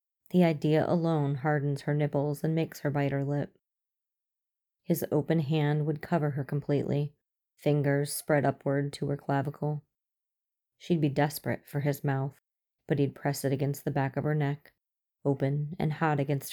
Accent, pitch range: American, 140-155 Hz